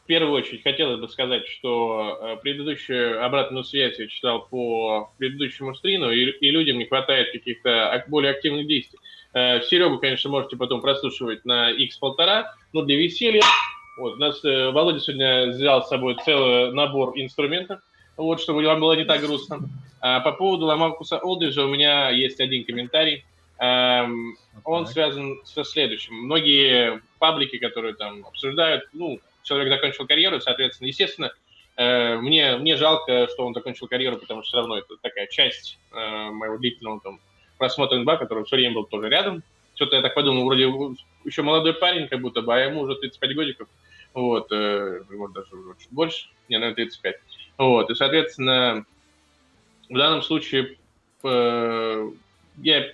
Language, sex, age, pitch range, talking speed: Russian, male, 20-39, 120-150 Hz, 145 wpm